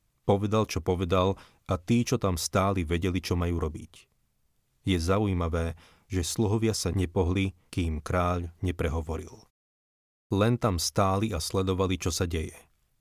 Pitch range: 85-95 Hz